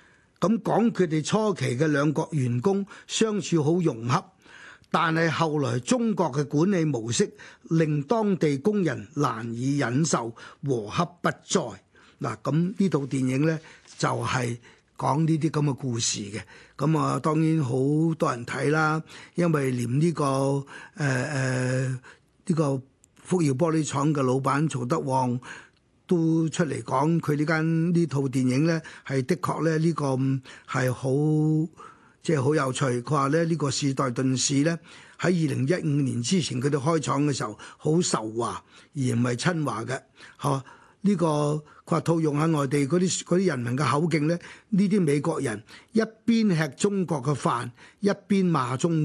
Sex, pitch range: male, 135-170 Hz